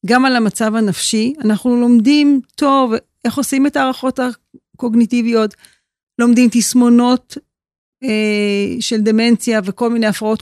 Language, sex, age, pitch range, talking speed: Hebrew, female, 40-59, 215-260 Hz, 115 wpm